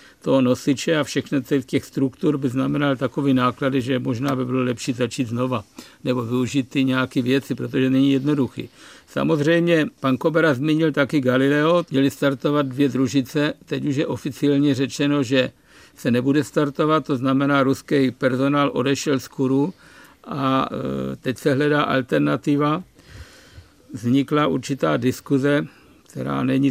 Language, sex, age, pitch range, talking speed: Czech, male, 60-79, 130-145 Hz, 140 wpm